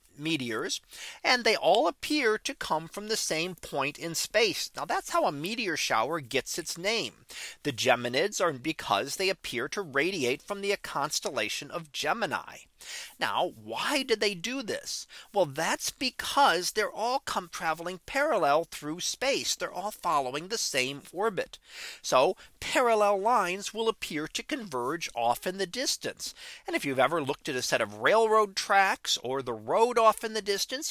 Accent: American